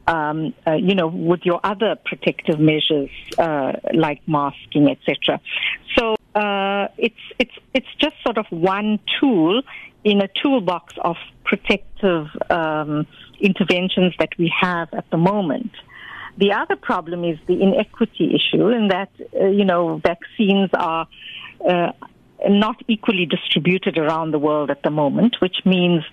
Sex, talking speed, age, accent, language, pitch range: female, 140 wpm, 50-69, Indian, English, 165-210 Hz